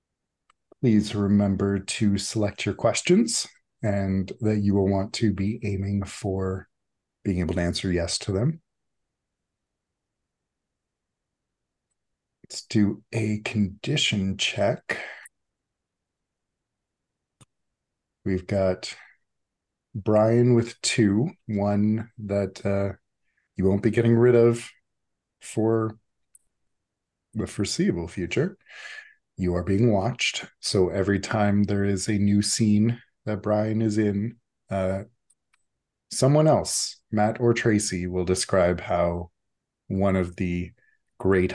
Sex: male